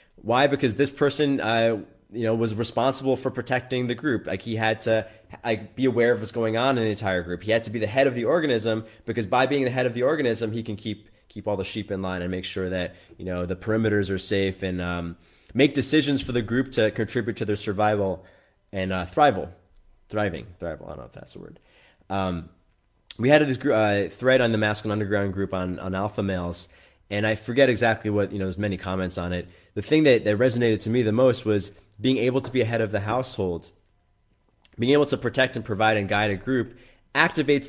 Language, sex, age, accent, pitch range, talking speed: English, male, 20-39, American, 100-130 Hz, 230 wpm